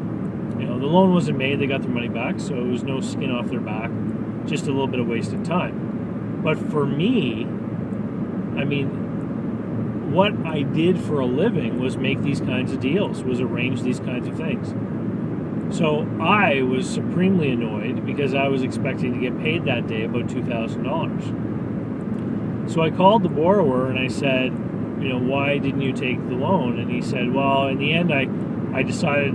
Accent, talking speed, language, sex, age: American, 180 wpm, English, male, 40-59